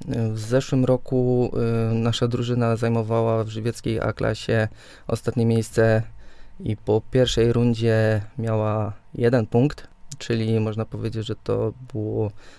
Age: 20-39